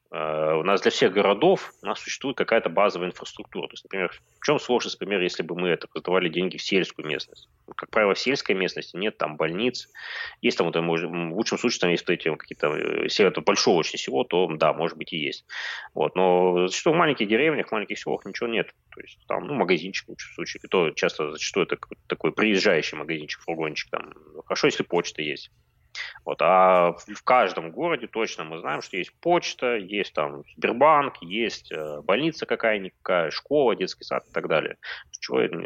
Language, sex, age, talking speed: Russian, male, 20-39, 185 wpm